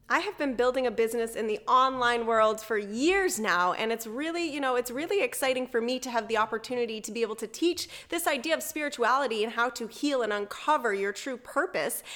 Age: 10-29